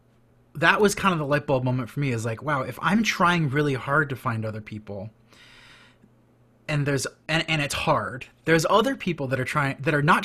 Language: English